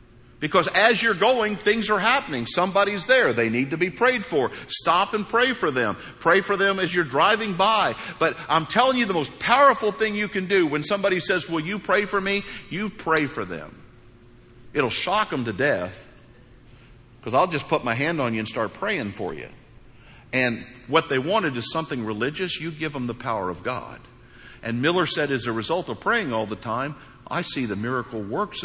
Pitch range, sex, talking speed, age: 120-200 Hz, male, 205 wpm, 50-69